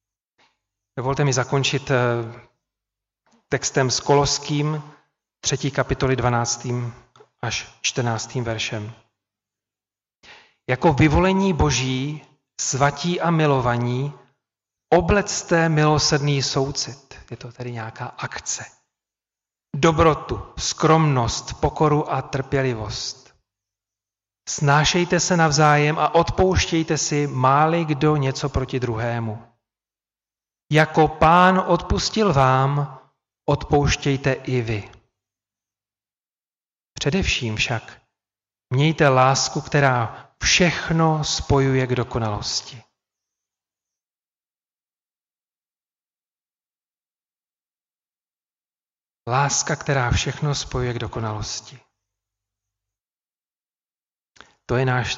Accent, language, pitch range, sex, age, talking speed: native, Czech, 110-145 Hz, male, 40-59, 75 wpm